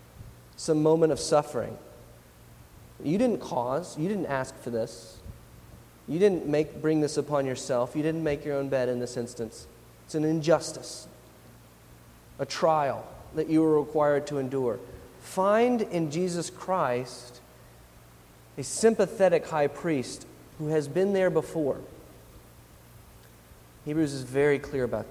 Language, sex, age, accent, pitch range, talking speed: English, male, 30-49, American, 125-195 Hz, 135 wpm